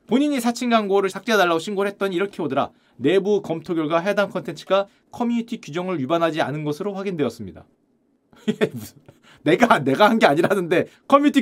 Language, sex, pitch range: Korean, male, 175-240 Hz